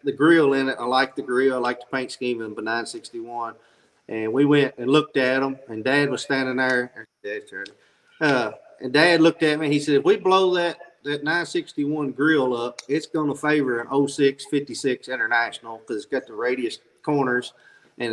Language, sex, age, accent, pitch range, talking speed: English, male, 40-59, American, 125-155 Hz, 195 wpm